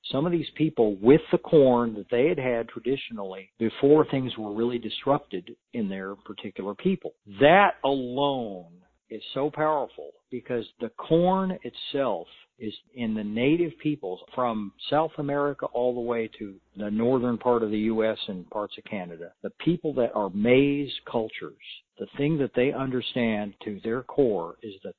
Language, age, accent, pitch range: English, 50-69, American, 110-145 Hz